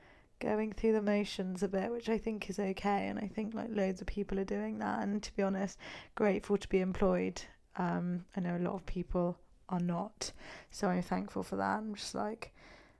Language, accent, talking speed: English, British, 210 wpm